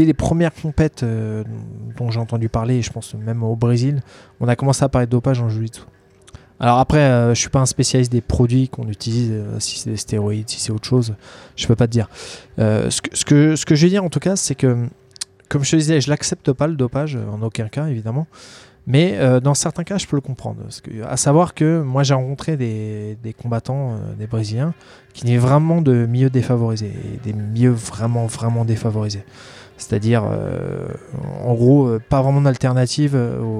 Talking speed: 210 wpm